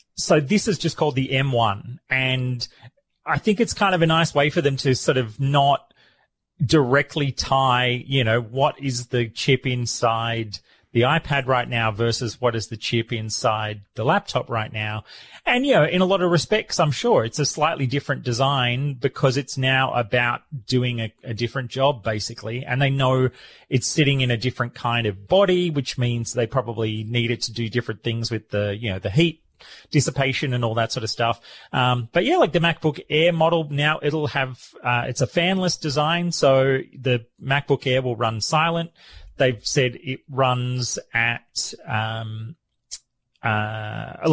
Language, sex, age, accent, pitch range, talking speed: English, male, 30-49, Australian, 120-145 Hz, 180 wpm